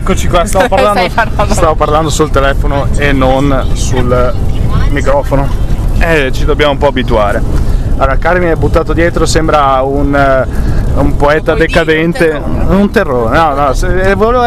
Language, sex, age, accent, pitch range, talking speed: Italian, male, 20-39, native, 120-150 Hz, 140 wpm